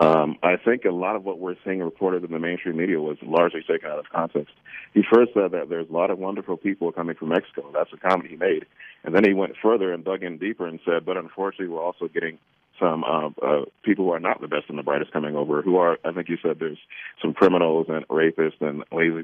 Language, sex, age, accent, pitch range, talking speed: English, male, 40-59, American, 80-95 Hz, 255 wpm